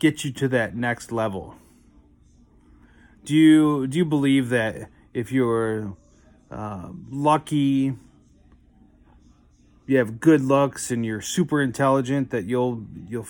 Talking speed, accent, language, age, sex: 120 wpm, American, English, 30-49, male